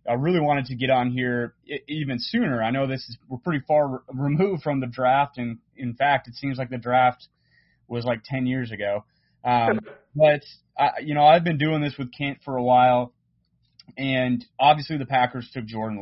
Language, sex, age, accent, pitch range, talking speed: English, male, 30-49, American, 120-140 Hz, 190 wpm